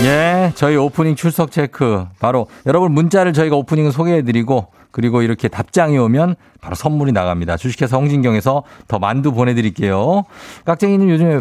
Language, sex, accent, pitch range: Korean, male, native, 105-160 Hz